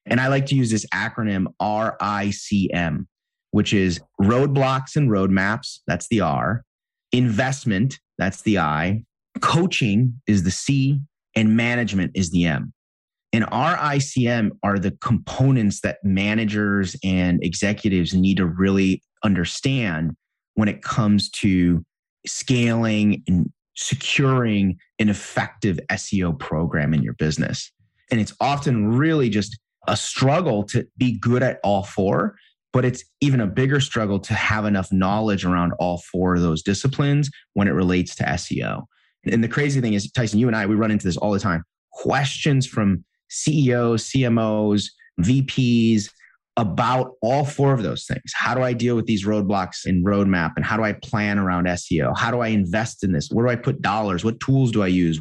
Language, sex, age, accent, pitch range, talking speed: English, male, 30-49, American, 95-125 Hz, 160 wpm